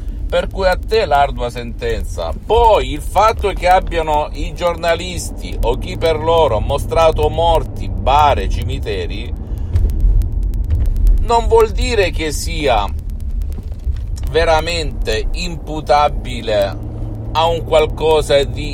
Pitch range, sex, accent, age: 95-140 Hz, male, native, 50-69